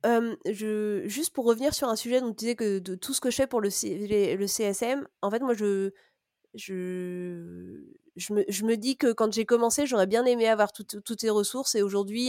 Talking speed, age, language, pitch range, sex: 235 wpm, 30-49, French, 195-240 Hz, female